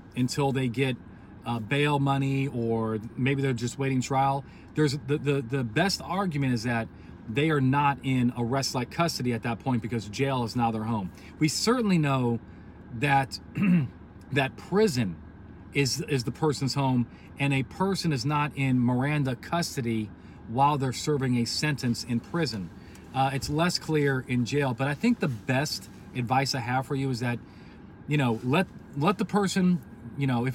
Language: English